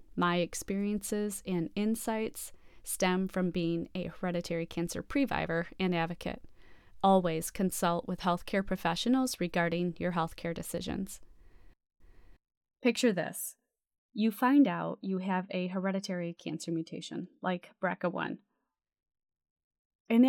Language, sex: English, female